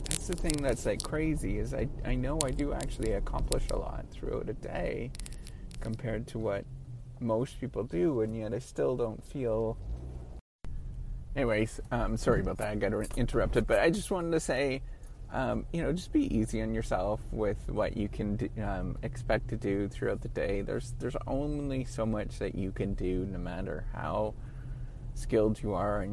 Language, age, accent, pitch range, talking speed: English, 30-49, American, 105-130 Hz, 180 wpm